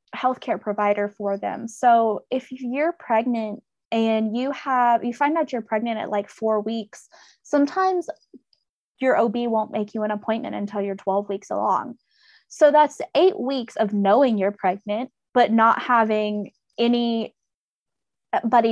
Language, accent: English, American